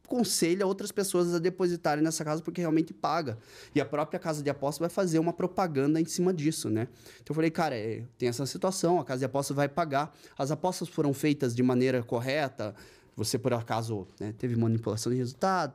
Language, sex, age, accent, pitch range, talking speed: Portuguese, male, 20-39, Brazilian, 135-185 Hz, 200 wpm